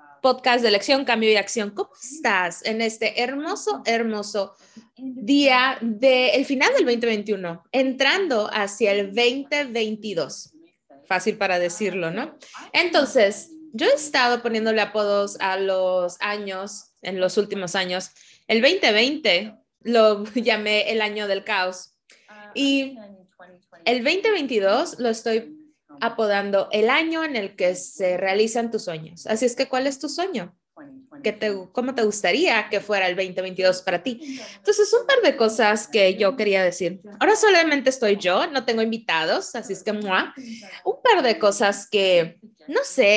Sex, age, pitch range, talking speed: female, 20-39, 195-260 Hz, 145 wpm